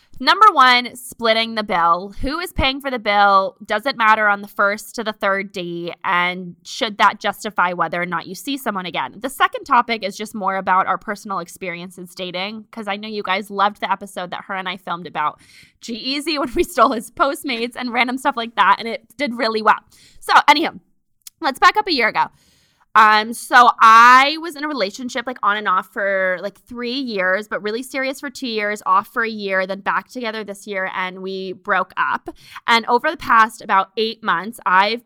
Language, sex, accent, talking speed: English, female, American, 210 wpm